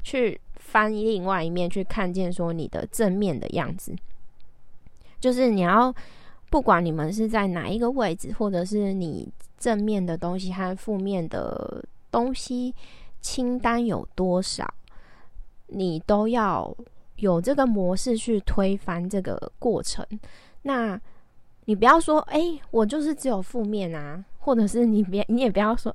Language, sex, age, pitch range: Chinese, female, 20-39, 180-235 Hz